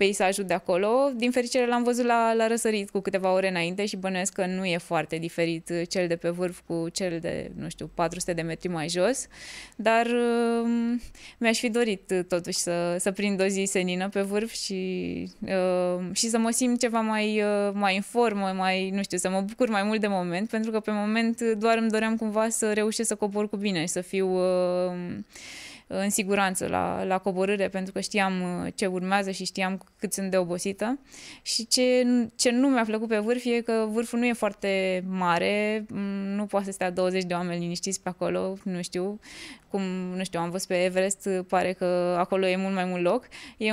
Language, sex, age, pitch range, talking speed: Romanian, female, 20-39, 180-220 Hz, 205 wpm